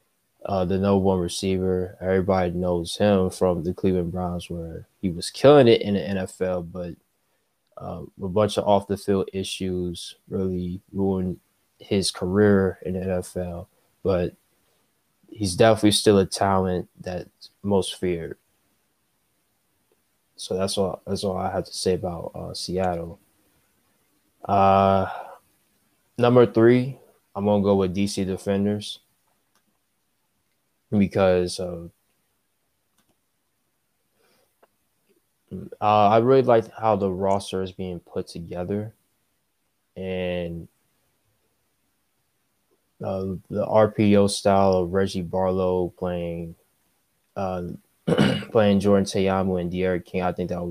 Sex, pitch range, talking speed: male, 90-100 Hz, 125 wpm